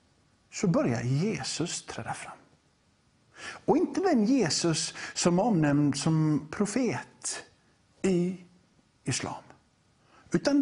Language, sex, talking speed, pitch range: English, male, 90 wpm, 155-215 Hz